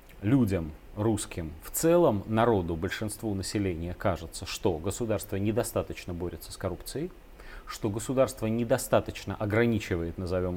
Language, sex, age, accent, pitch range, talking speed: Russian, male, 30-49, native, 95-130 Hz, 110 wpm